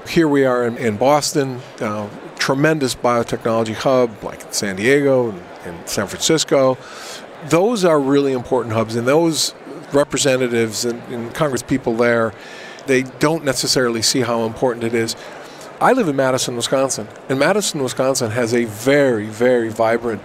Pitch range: 115-135 Hz